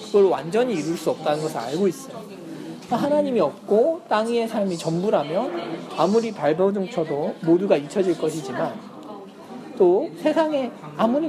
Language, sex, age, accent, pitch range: Korean, male, 40-59, native, 175-255 Hz